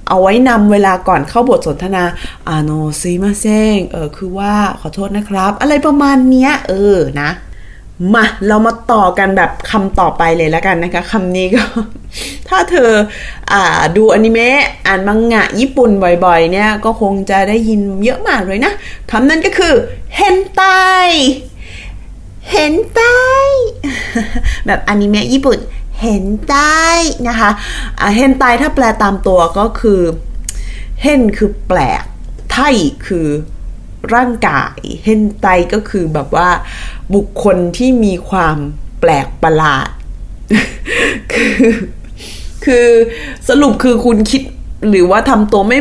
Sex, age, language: female, 20-39, Thai